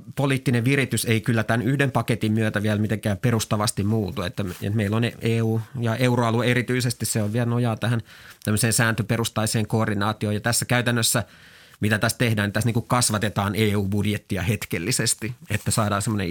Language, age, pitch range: Finnish, 30-49, 105-120 Hz